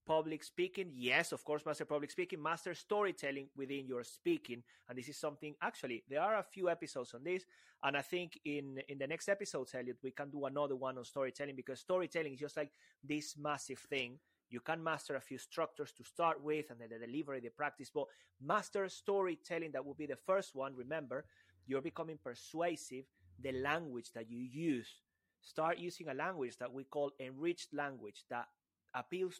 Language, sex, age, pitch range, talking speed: English, male, 30-49, 125-160 Hz, 190 wpm